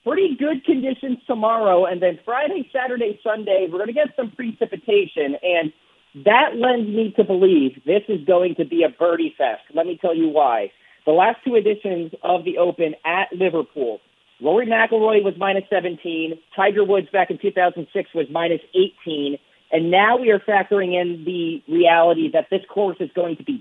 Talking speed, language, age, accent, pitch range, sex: 180 wpm, English, 40-59, American, 165-200 Hz, male